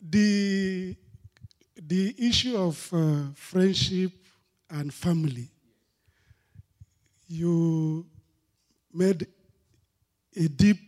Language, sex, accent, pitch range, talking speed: English, male, Nigerian, 145-195 Hz, 65 wpm